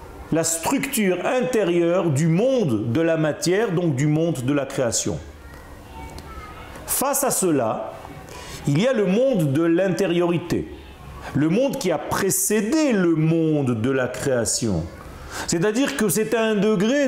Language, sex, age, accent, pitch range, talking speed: French, male, 40-59, French, 160-220 Hz, 140 wpm